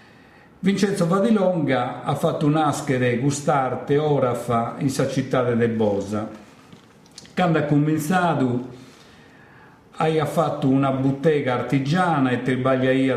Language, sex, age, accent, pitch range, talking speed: Italian, male, 50-69, native, 120-155 Hz, 115 wpm